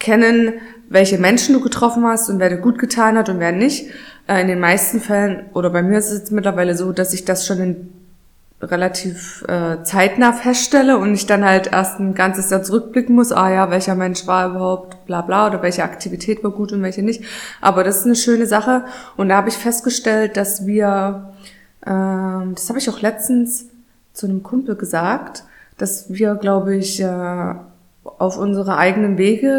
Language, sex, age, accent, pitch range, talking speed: German, female, 20-39, German, 185-235 Hz, 185 wpm